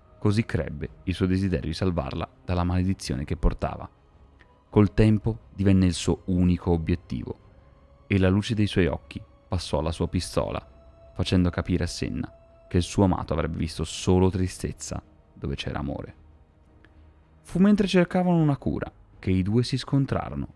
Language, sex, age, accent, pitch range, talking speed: Italian, male, 30-49, native, 80-100 Hz, 155 wpm